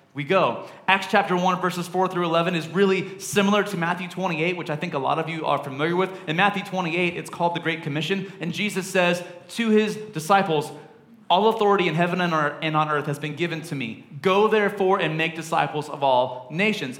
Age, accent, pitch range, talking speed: 30-49, American, 150-190 Hz, 210 wpm